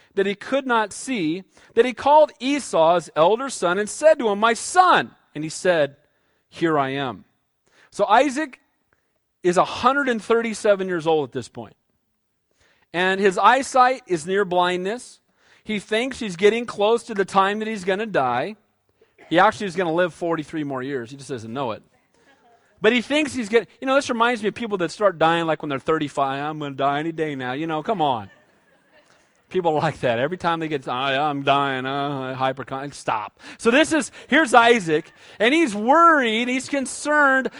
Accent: American